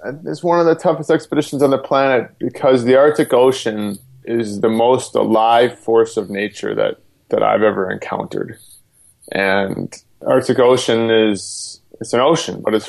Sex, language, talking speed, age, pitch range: male, English, 165 wpm, 20-39, 100-120 Hz